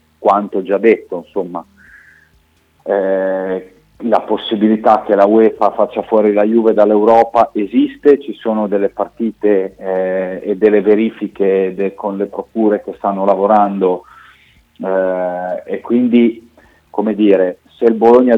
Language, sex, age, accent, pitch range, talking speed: Italian, male, 40-59, native, 95-115 Hz, 125 wpm